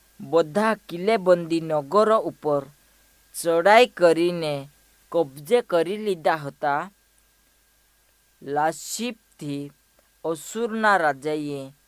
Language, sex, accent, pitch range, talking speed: Hindi, female, native, 145-200 Hz, 60 wpm